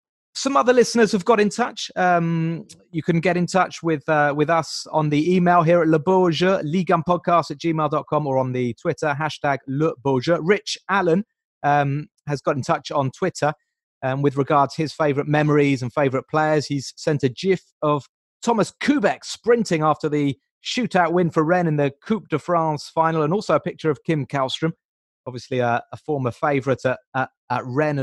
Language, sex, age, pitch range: English, male, 30-49, 130-165 Hz